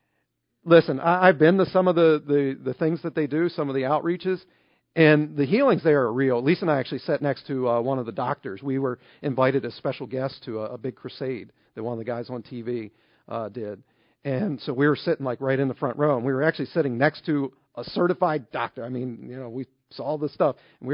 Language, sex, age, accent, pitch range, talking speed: English, male, 40-59, American, 125-160 Hz, 245 wpm